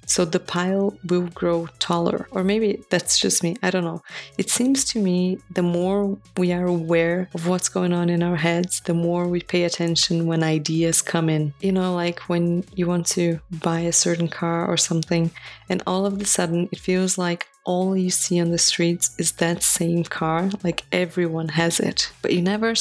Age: 20-39